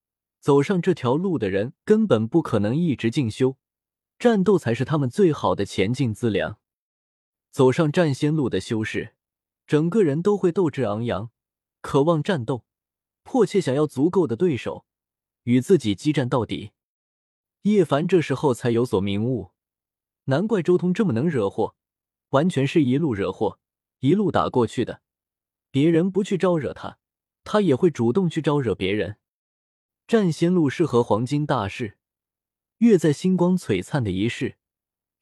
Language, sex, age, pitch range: Chinese, male, 20-39, 110-165 Hz